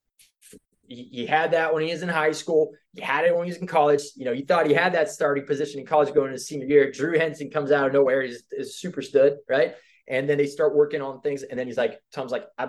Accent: American